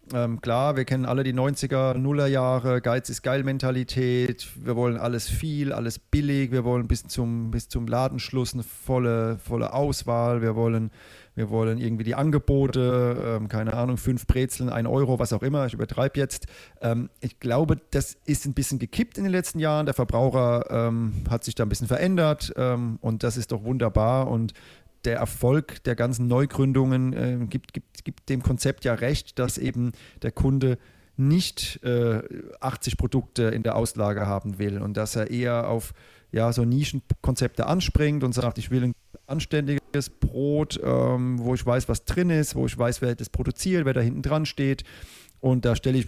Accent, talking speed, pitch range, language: German, 180 wpm, 115-135 Hz, German